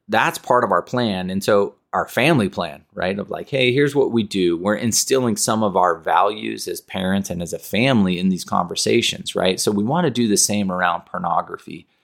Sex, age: male, 30-49